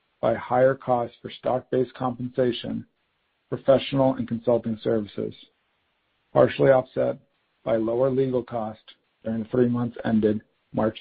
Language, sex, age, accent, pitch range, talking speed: English, male, 50-69, American, 115-130 Hz, 120 wpm